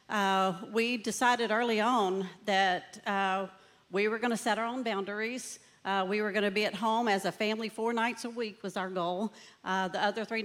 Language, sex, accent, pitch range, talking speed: English, female, American, 190-225 Hz, 210 wpm